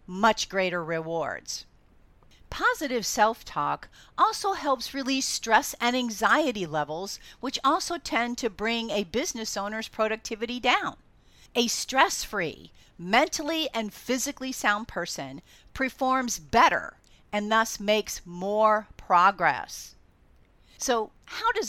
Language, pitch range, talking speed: English, 195-255 Hz, 110 wpm